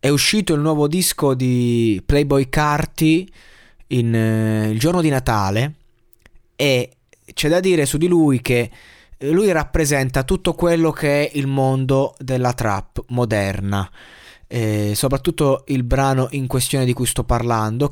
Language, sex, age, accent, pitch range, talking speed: Italian, male, 20-39, native, 115-150 Hz, 135 wpm